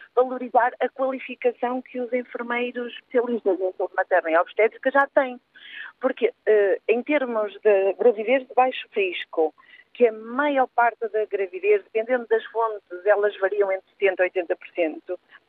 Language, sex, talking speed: Portuguese, female, 145 wpm